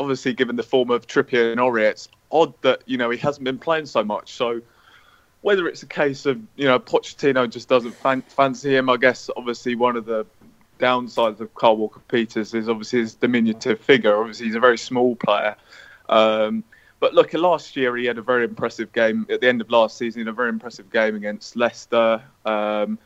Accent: British